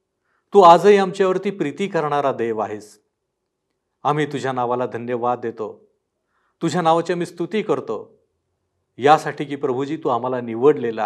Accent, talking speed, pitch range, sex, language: native, 125 wpm, 125-170 Hz, male, Marathi